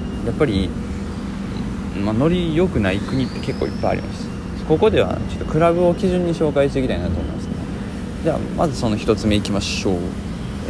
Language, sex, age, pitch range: Japanese, male, 20-39, 90-125 Hz